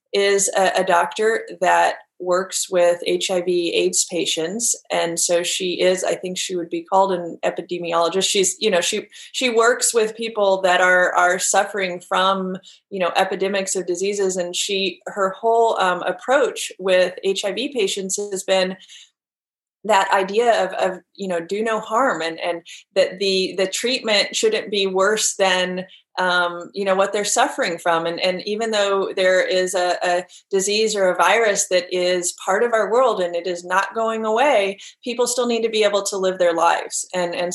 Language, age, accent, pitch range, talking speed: English, 30-49, American, 180-210 Hz, 175 wpm